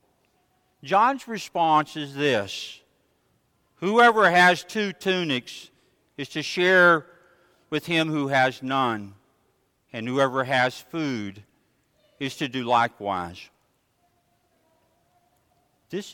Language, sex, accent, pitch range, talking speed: English, male, American, 125-190 Hz, 95 wpm